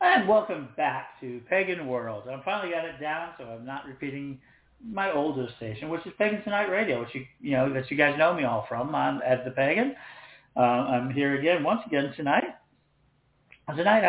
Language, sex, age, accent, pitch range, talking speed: English, male, 50-69, American, 130-175 Hz, 195 wpm